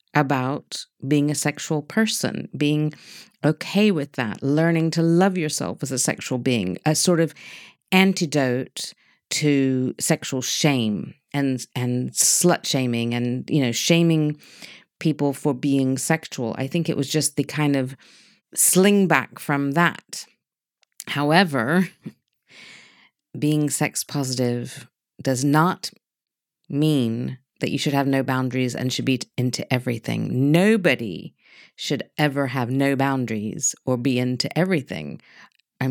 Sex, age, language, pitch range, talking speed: female, 40-59, English, 130-165 Hz, 130 wpm